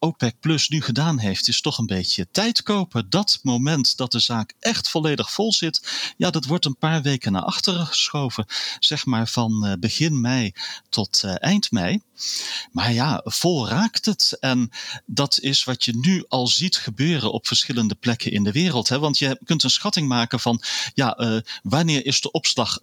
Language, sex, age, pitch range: Dutch, male, 40-59, 110-160 Hz